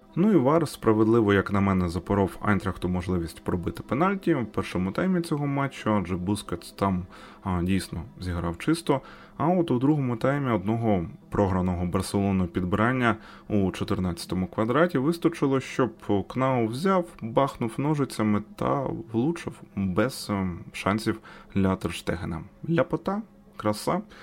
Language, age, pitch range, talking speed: Ukrainian, 20-39, 90-115 Hz, 125 wpm